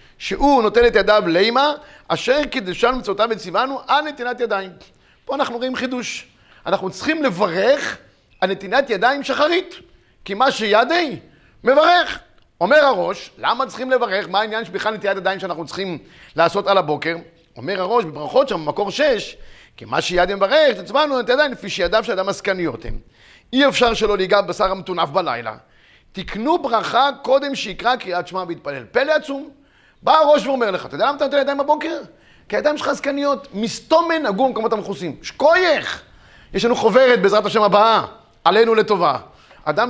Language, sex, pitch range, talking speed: Hebrew, male, 195-285 Hz, 160 wpm